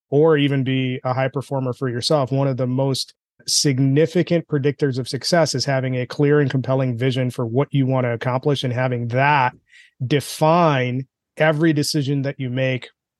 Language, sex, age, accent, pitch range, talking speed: English, male, 30-49, American, 130-150 Hz, 175 wpm